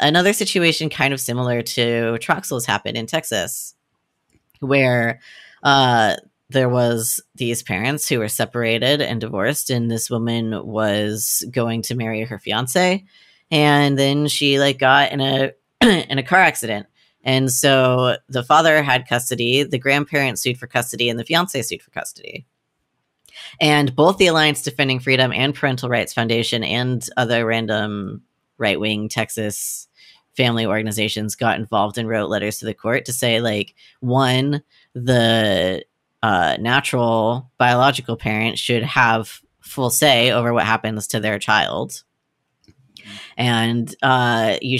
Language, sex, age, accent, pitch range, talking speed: English, female, 30-49, American, 115-140 Hz, 140 wpm